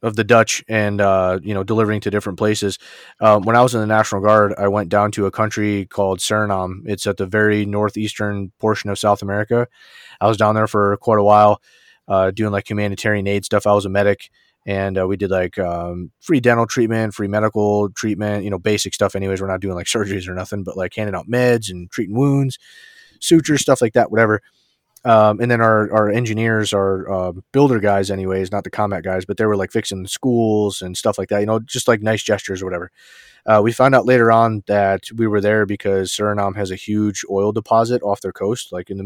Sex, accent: male, American